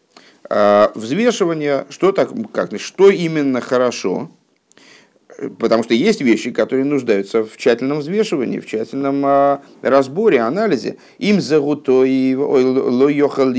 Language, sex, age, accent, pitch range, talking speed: Russian, male, 50-69, native, 115-145 Hz, 100 wpm